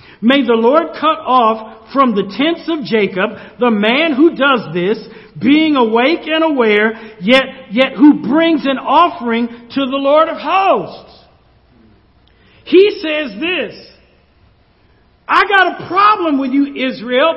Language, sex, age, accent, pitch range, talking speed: English, male, 50-69, American, 215-285 Hz, 140 wpm